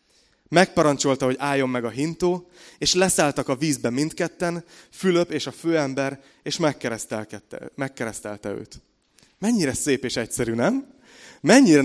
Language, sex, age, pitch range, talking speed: Hungarian, male, 30-49, 120-155 Hz, 120 wpm